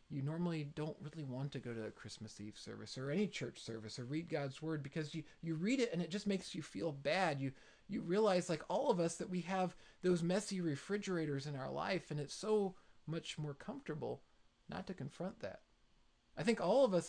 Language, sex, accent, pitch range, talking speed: English, male, American, 145-190 Hz, 220 wpm